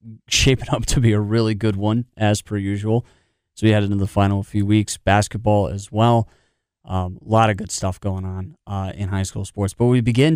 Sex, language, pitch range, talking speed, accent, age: male, English, 95-110 Hz, 220 wpm, American, 20-39